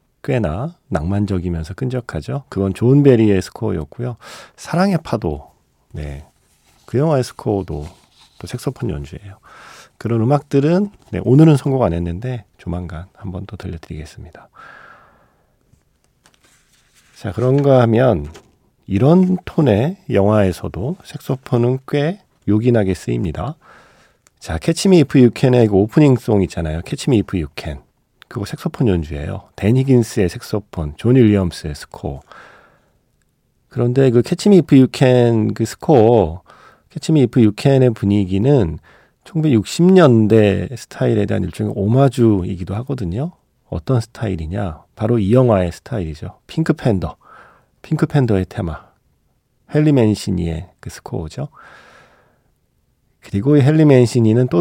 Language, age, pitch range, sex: Korean, 40-59, 95-135 Hz, male